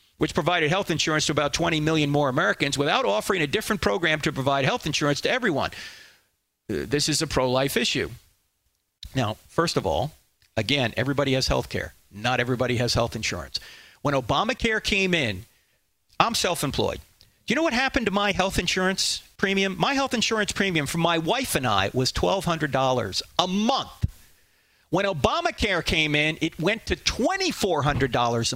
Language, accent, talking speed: English, American, 160 wpm